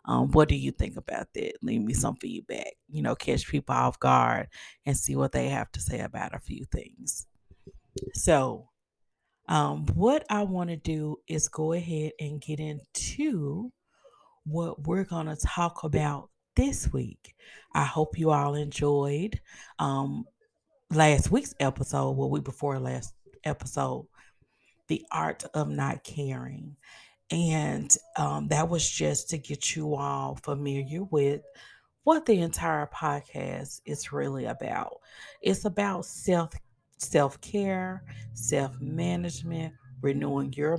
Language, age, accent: English, 40-59, American